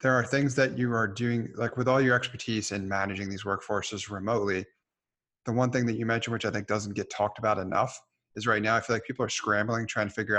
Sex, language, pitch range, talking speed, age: male, English, 105-125 Hz, 250 wpm, 30-49